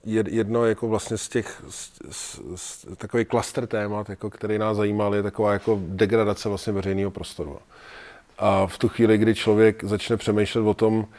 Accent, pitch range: native, 95-110 Hz